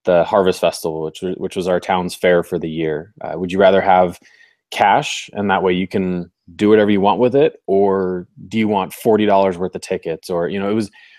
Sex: male